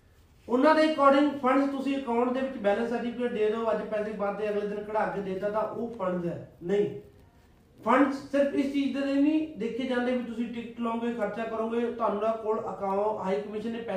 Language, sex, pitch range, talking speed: Punjabi, male, 210-255 Hz, 135 wpm